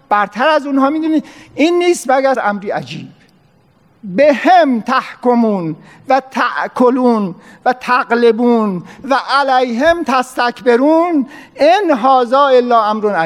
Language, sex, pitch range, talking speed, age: Persian, male, 230-290 Hz, 105 wpm, 50-69